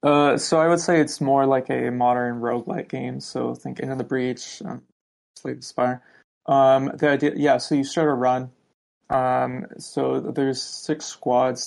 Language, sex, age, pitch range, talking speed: English, male, 20-39, 120-140 Hz, 180 wpm